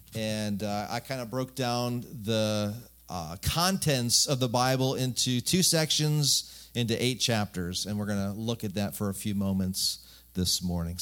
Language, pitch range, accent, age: English, 115-150 Hz, American, 30-49